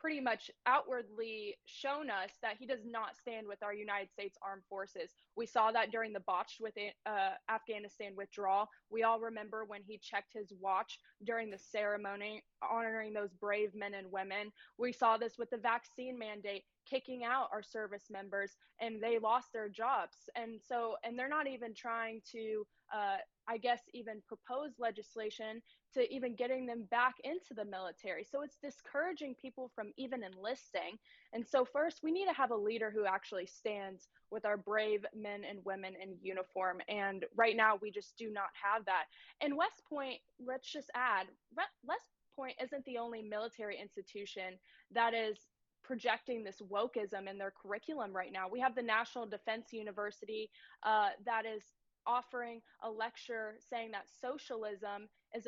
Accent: American